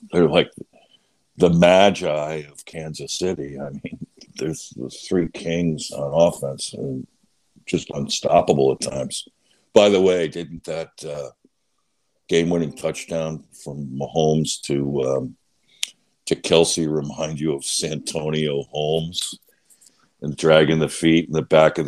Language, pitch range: English, 75-90 Hz